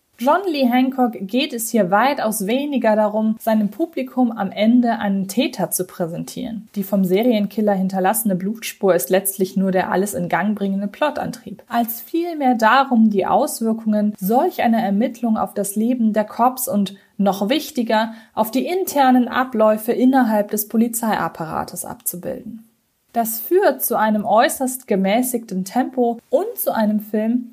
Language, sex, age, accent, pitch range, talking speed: German, female, 20-39, German, 200-255 Hz, 145 wpm